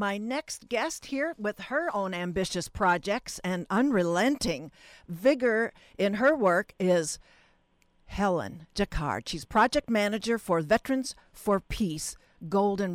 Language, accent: English, American